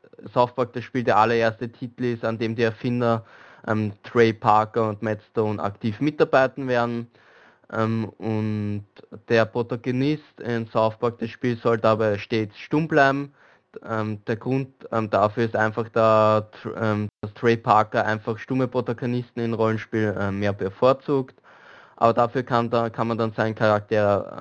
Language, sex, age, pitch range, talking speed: German, male, 20-39, 110-125 Hz, 155 wpm